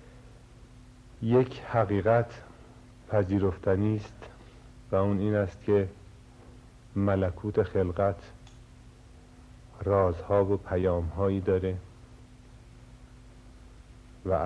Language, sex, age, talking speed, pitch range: Persian, male, 50-69, 65 wpm, 95-115 Hz